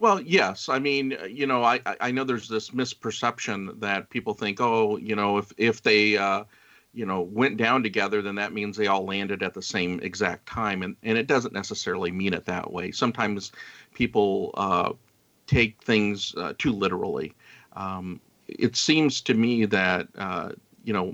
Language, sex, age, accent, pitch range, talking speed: English, male, 50-69, American, 100-120 Hz, 180 wpm